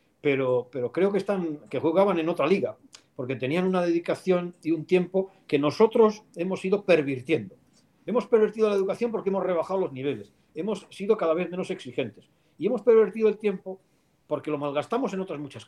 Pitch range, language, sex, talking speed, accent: 145-185 Hz, Spanish, male, 185 wpm, Spanish